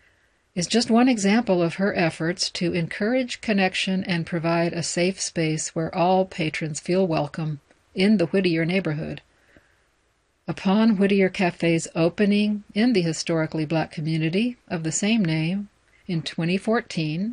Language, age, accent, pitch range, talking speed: English, 60-79, American, 165-200 Hz, 135 wpm